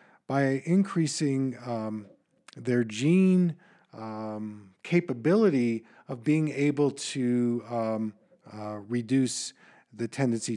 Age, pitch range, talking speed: 40-59, 120-155 Hz, 90 wpm